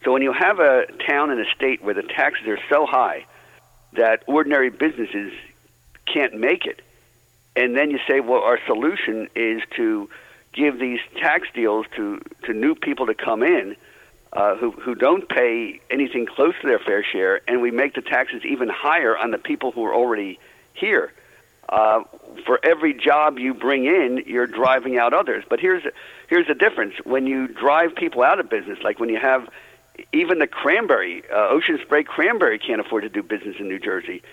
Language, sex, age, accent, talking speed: English, male, 50-69, American, 190 wpm